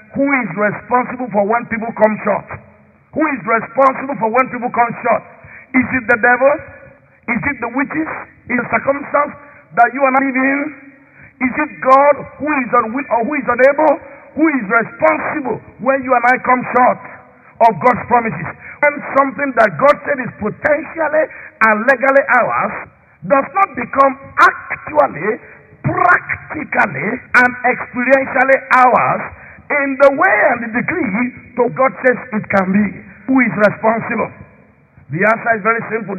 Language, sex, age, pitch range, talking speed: English, male, 50-69, 230-275 Hz, 155 wpm